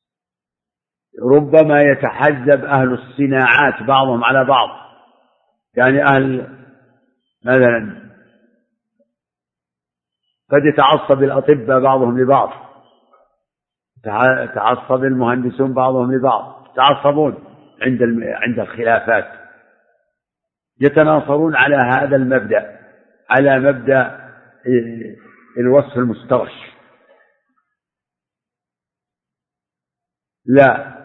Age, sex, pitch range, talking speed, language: 60-79, male, 120-140 Hz, 60 wpm, Arabic